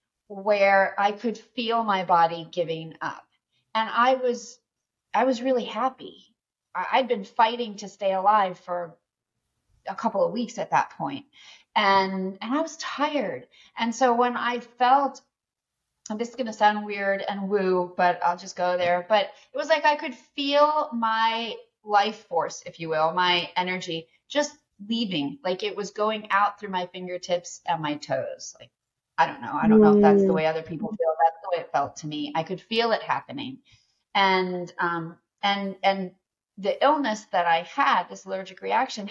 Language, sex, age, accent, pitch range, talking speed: English, female, 30-49, American, 180-240 Hz, 180 wpm